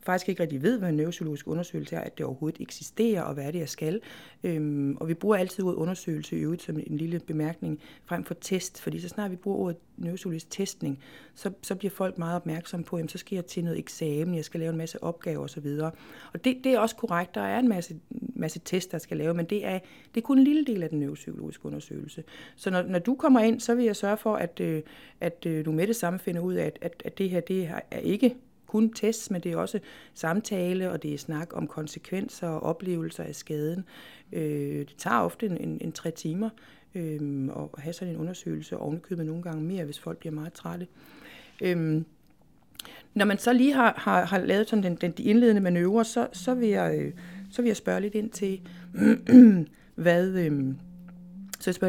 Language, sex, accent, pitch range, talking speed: Danish, female, native, 160-200 Hz, 215 wpm